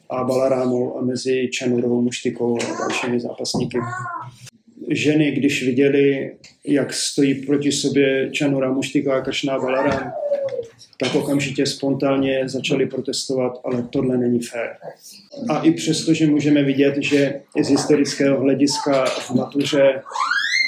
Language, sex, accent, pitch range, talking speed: Czech, male, native, 125-145 Hz, 120 wpm